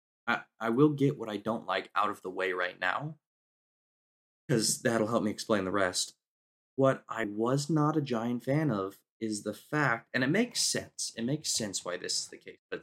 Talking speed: 210 wpm